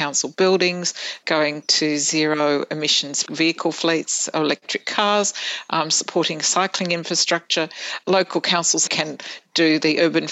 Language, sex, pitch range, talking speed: English, female, 155-175 Hz, 115 wpm